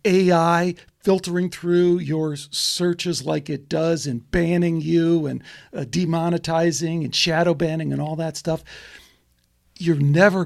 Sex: male